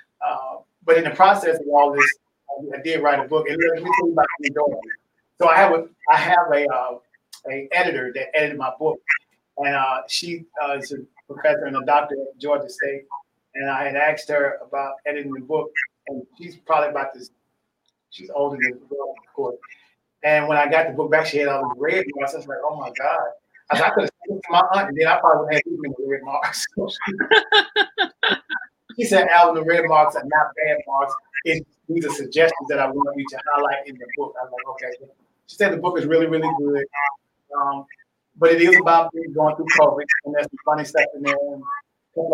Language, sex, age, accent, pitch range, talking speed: English, male, 30-49, American, 140-165 Hz, 220 wpm